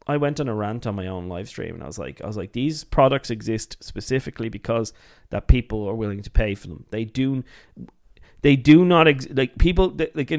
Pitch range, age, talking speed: 115-150 Hz, 30-49, 225 wpm